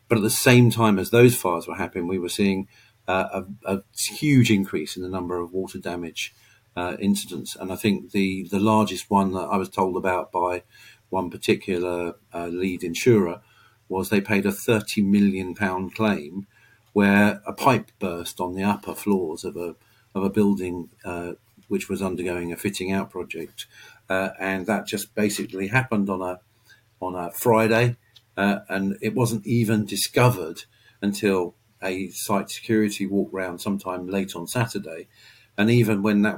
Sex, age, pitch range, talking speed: male, 50-69, 95-115 Hz, 170 wpm